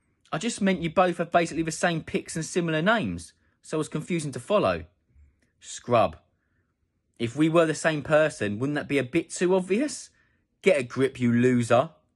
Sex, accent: male, British